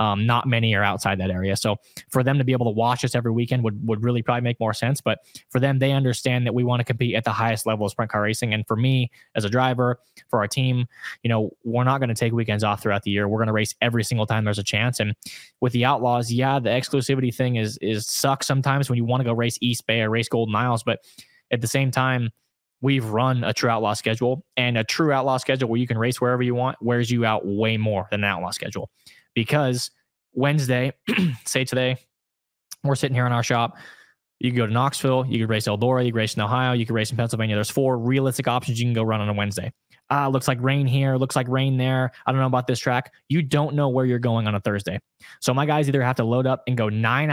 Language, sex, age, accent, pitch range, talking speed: English, male, 20-39, American, 115-130 Hz, 260 wpm